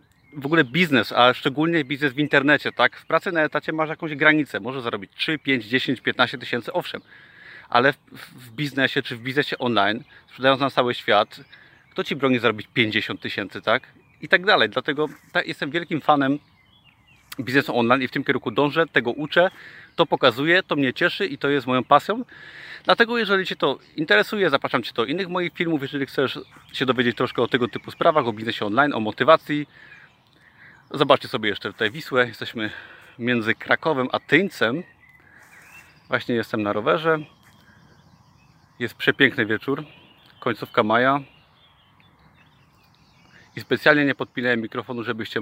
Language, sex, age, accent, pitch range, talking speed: Polish, male, 30-49, native, 120-150 Hz, 155 wpm